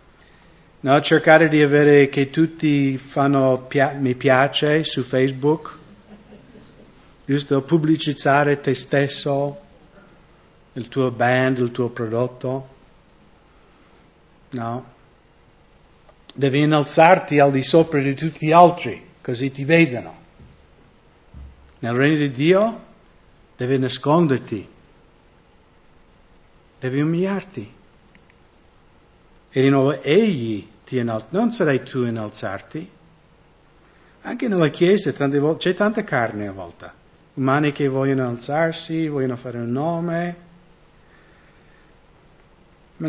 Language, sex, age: English, male, 60-79